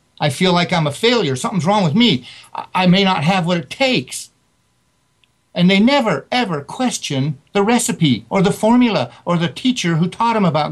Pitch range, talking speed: 150-200 Hz, 190 wpm